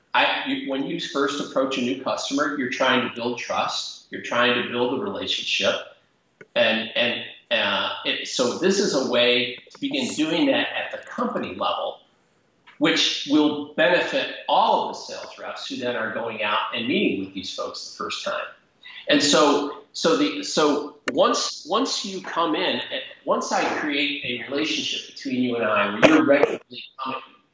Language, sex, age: English, male, 40-59